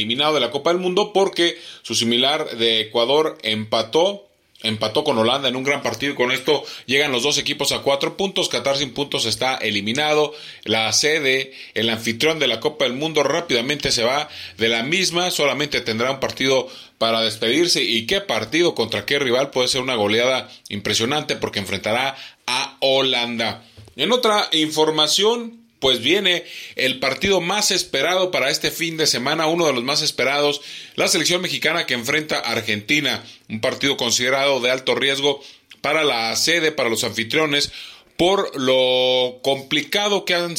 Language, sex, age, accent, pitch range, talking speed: Spanish, male, 30-49, Mexican, 115-155 Hz, 165 wpm